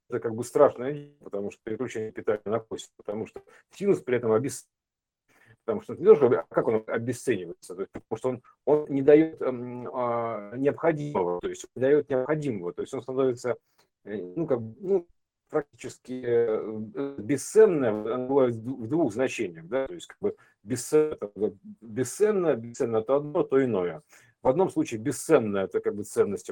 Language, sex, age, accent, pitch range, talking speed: Russian, male, 50-69, native, 120-195 Hz, 145 wpm